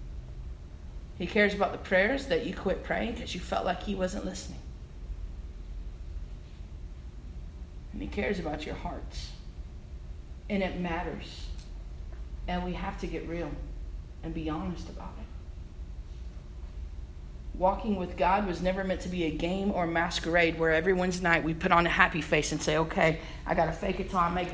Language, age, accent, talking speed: English, 40-59, American, 165 wpm